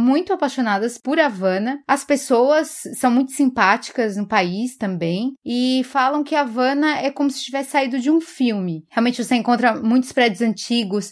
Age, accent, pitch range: 20-39, Brazilian, 220-265 Hz